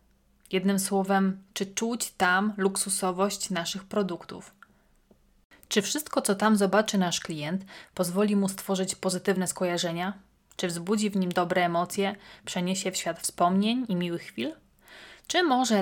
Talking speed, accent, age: 135 wpm, native, 30-49